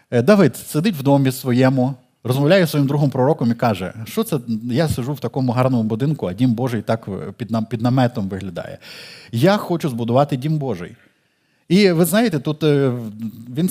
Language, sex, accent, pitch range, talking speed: Ukrainian, male, native, 120-160 Hz, 170 wpm